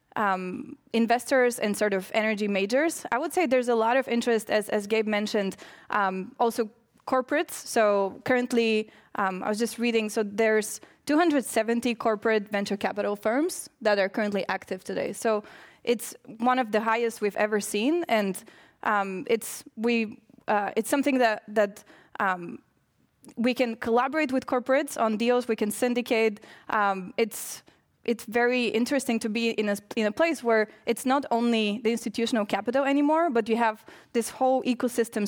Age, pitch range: 20-39, 210-250 Hz